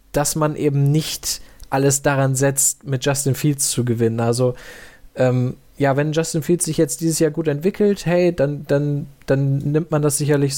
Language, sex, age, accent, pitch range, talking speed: German, male, 20-39, German, 135-150 Hz, 180 wpm